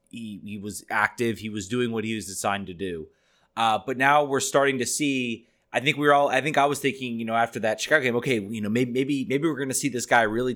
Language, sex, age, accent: English, male, 30-49, American